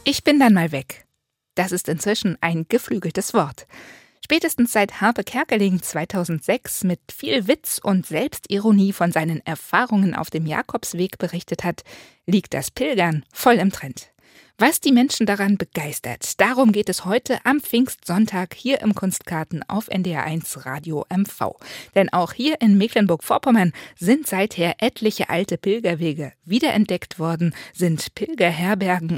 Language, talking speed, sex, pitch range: German, 140 wpm, female, 165-220 Hz